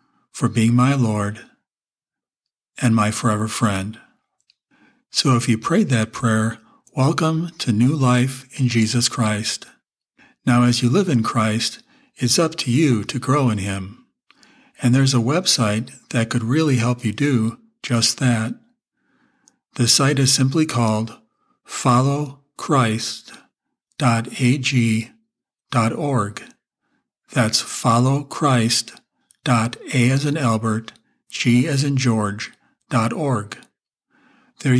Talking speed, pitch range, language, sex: 115 wpm, 115-140 Hz, English, male